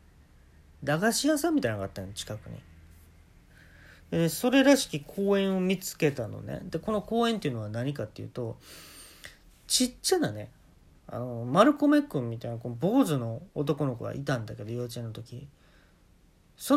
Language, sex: Japanese, male